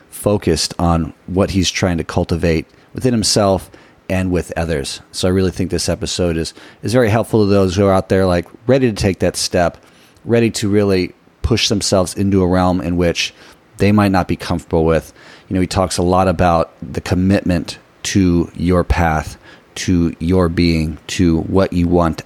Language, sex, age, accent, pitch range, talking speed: English, male, 30-49, American, 85-105 Hz, 185 wpm